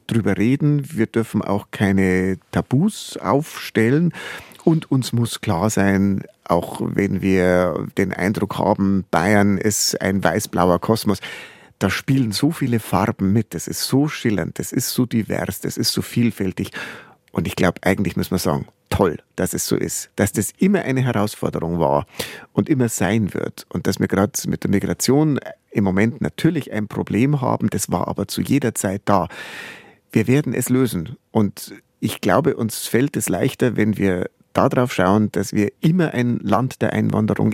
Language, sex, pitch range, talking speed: German, male, 100-125 Hz, 170 wpm